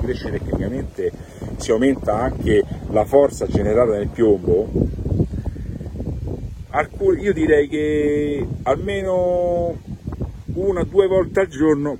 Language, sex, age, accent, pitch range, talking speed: Italian, male, 50-69, native, 105-150 Hz, 95 wpm